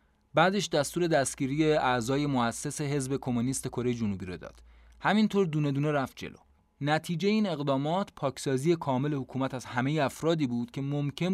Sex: male